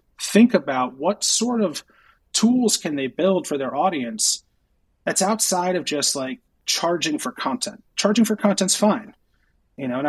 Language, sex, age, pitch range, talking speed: English, male, 30-49, 140-205 Hz, 160 wpm